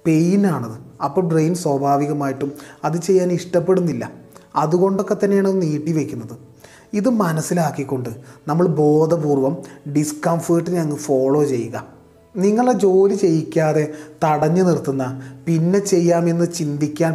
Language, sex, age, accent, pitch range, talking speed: Malayalam, male, 30-49, native, 140-170 Hz, 95 wpm